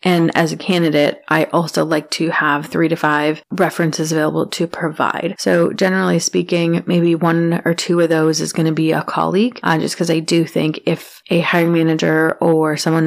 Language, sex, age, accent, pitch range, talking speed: English, female, 30-49, American, 155-175 Hz, 195 wpm